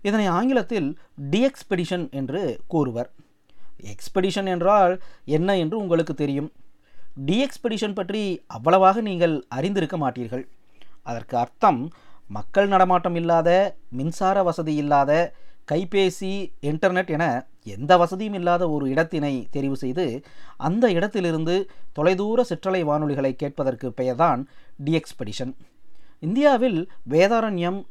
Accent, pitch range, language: native, 140-190 Hz, Tamil